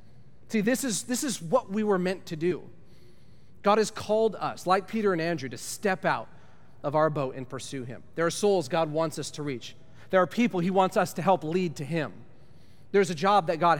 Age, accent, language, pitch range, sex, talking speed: 30-49, American, English, 125-175 Hz, male, 220 wpm